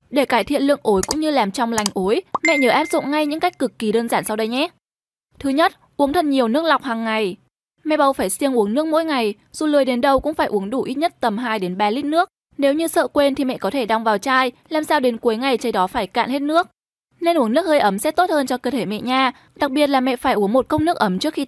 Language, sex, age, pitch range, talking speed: Vietnamese, female, 10-29, 235-310 Hz, 295 wpm